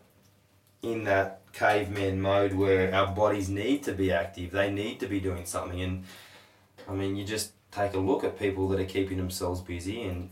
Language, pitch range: English, 95-100 Hz